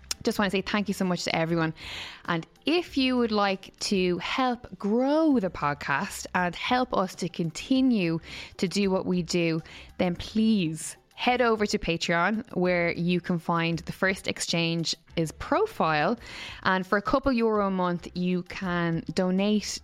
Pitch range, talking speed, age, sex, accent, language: 165-200 Hz, 165 wpm, 10-29, female, Irish, English